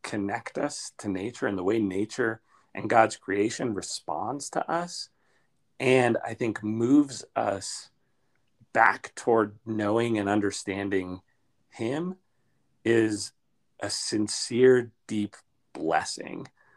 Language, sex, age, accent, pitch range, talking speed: English, male, 30-49, American, 100-115 Hz, 105 wpm